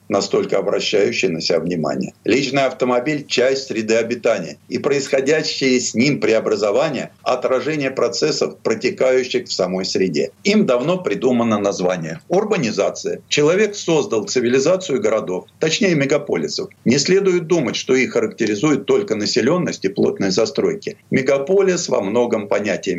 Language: Russian